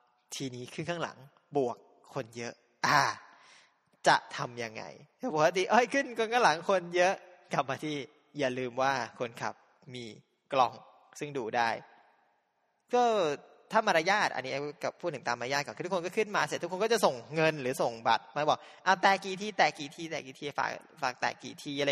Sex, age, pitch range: male, 20-39, 130-185 Hz